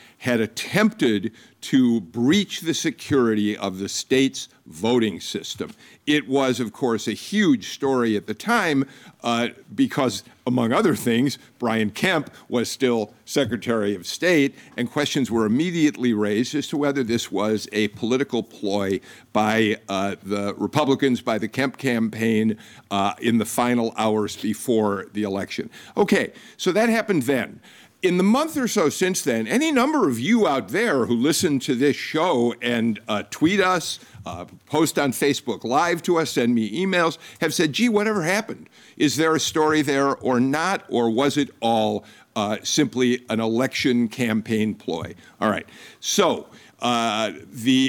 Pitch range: 110-150 Hz